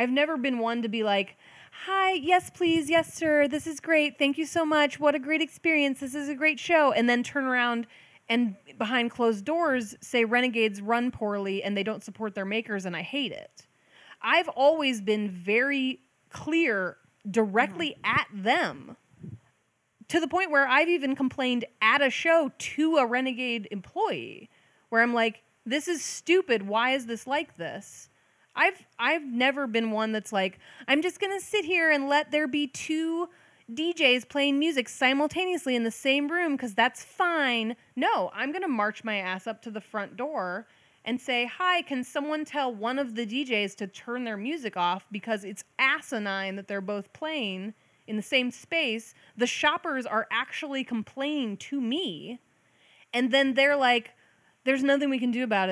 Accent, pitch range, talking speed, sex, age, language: American, 220-295 Hz, 180 wpm, female, 20-39, English